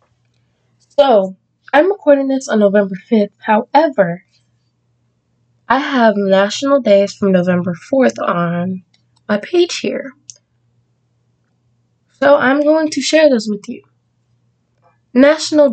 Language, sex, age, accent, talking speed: English, female, 20-39, American, 105 wpm